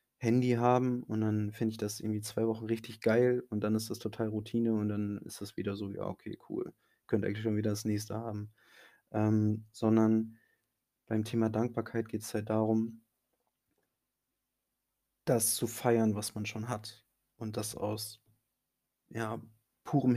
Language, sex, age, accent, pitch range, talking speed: German, male, 20-39, German, 110-120 Hz, 165 wpm